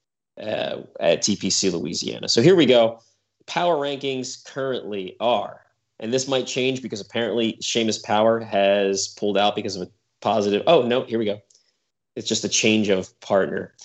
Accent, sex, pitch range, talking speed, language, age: American, male, 100-125 Hz, 165 wpm, English, 30-49